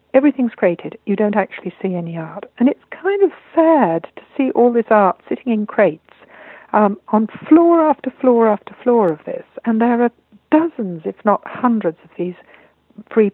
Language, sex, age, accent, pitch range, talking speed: English, female, 60-79, British, 190-240 Hz, 180 wpm